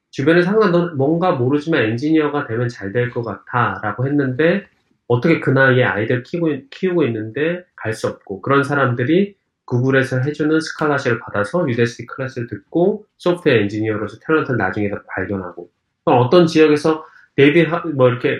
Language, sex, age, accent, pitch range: Korean, male, 20-39, native, 115-170 Hz